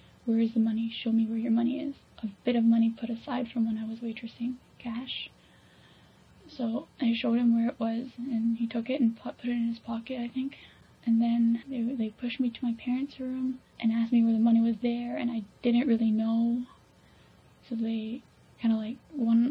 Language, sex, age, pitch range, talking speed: English, female, 10-29, 230-255 Hz, 215 wpm